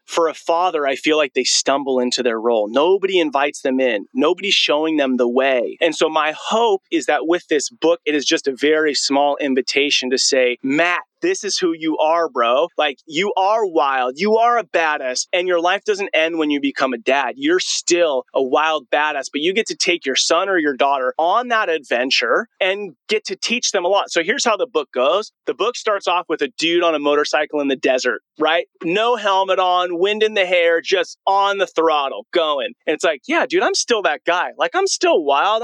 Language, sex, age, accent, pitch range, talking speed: English, male, 30-49, American, 145-225 Hz, 225 wpm